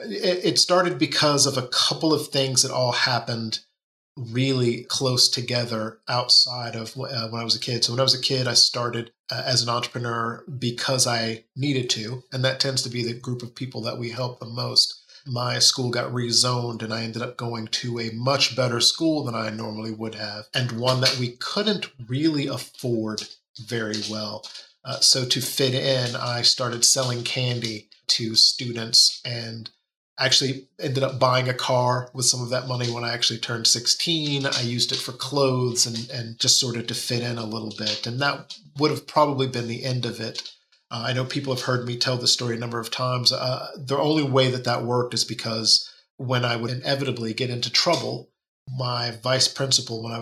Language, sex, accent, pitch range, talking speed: English, male, American, 115-130 Hz, 200 wpm